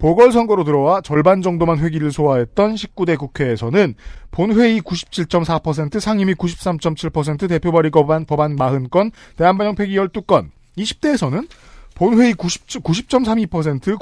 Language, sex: Korean, male